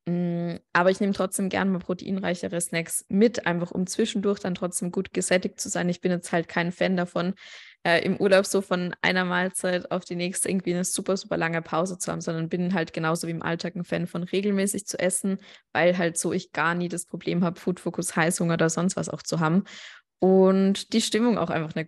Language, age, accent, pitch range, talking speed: German, 20-39, German, 170-195 Hz, 220 wpm